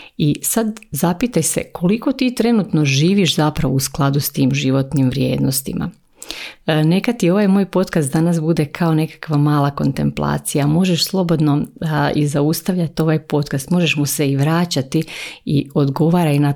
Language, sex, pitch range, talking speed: Croatian, female, 145-170 Hz, 150 wpm